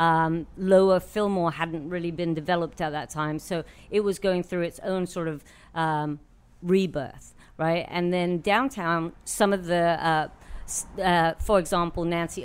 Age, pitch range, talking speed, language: 50-69, 150-175 Hz, 160 wpm, English